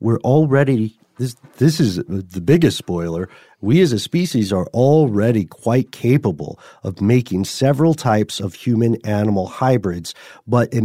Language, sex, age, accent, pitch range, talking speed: English, male, 40-59, American, 100-130 Hz, 140 wpm